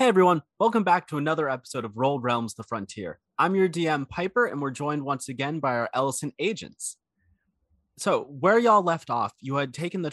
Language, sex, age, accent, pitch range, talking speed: English, male, 30-49, American, 110-155 Hz, 200 wpm